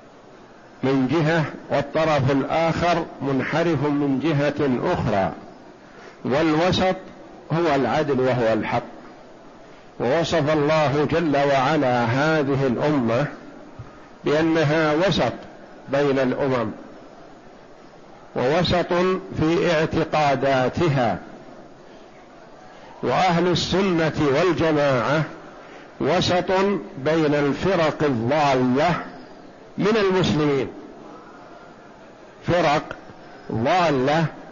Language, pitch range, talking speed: Arabic, 140-175 Hz, 65 wpm